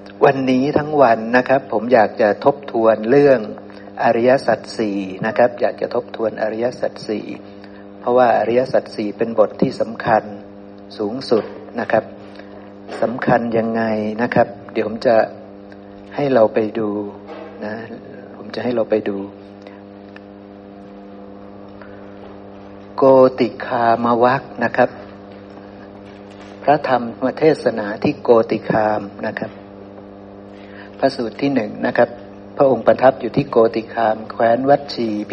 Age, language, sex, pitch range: 60-79, Thai, male, 100-125 Hz